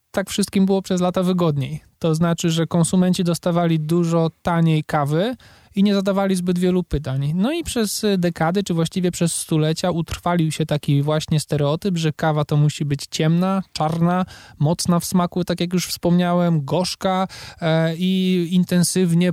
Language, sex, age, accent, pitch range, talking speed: Polish, male, 20-39, native, 150-180 Hz, 155 wpm